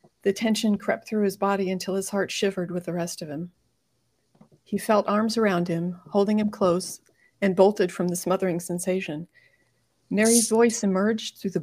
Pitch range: 180-205 Hz